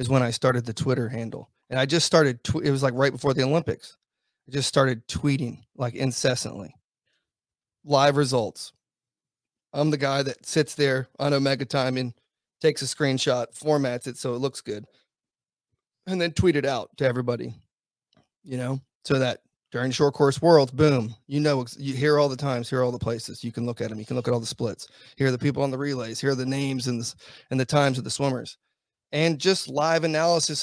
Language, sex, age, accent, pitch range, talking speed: English, male, 30-49, American, 125-145 Hz, 205 wpm